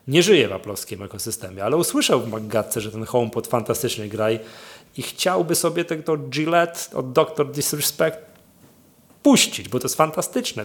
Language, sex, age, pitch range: Polish, male, 30-49, 115-145 Hz